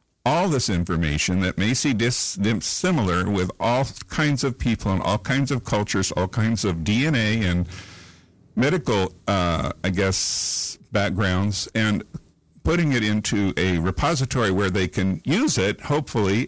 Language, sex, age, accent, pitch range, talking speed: English, male, 50-69, American, 95-125 Hz, 140 wpm